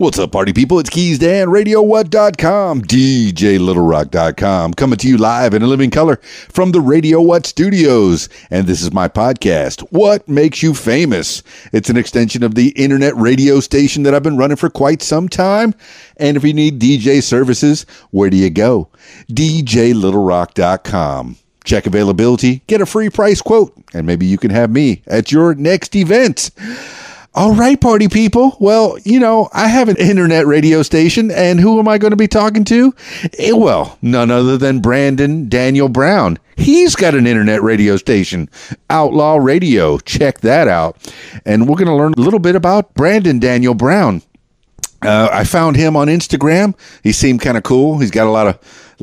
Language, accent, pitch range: English, American, 120-180 Hz